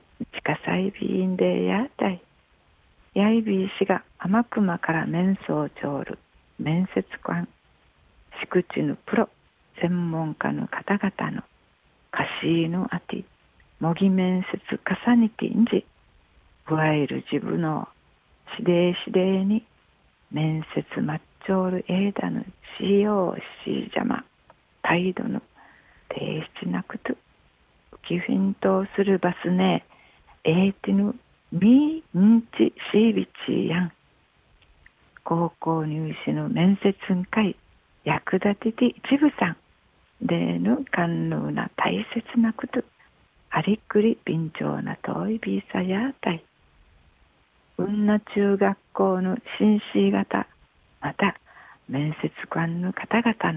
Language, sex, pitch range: Japanese, female, 155-205 Hz